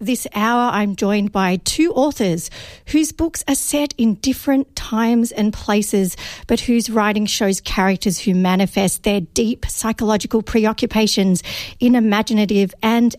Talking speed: 135 wpm